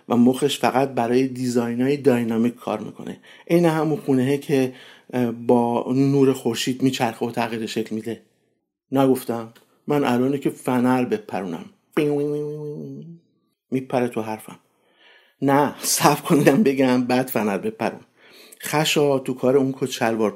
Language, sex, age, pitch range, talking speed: Persian, male, 50-69, 125-170 Hz, 120 wpm